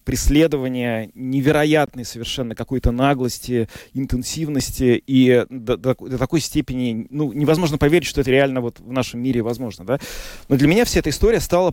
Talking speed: 160 wpm